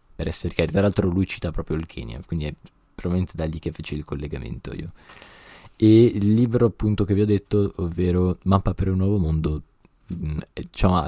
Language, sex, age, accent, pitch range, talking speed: Italian, male, 20-39, native, 80-95 Hz, 195 wpm